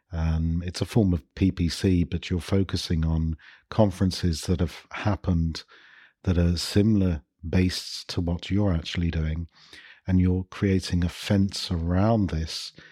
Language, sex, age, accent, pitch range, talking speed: English, male, 50-69, British, 90-100 Hz, 145 wpm